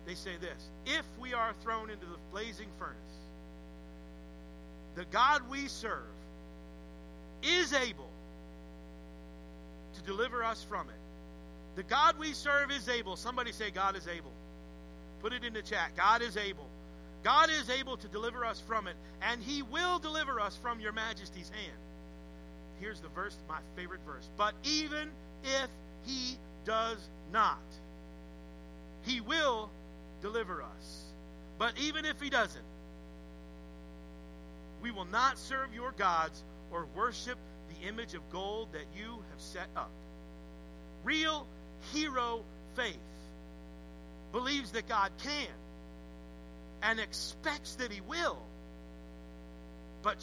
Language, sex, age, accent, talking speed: English, male, 50-69, American, 130 wpm